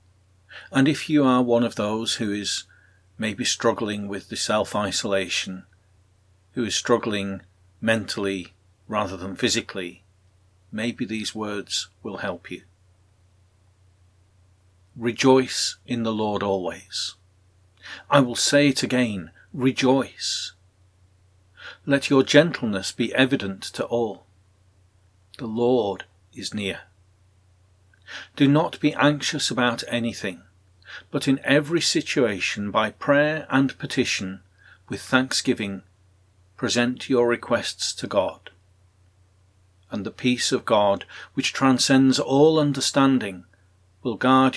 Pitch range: 95-120 Hz